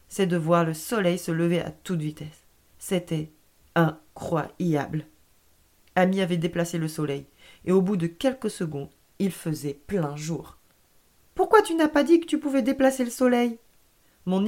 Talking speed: 160 wpm